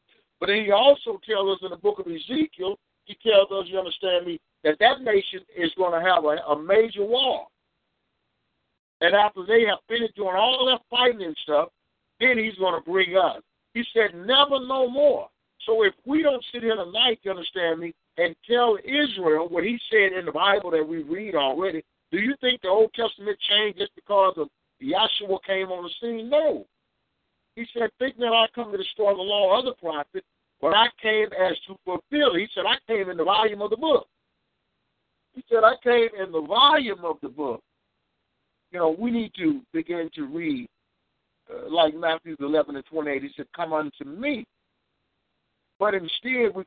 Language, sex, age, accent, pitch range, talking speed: English, male, 50-69, American, 180-250 Hz, 195 wpm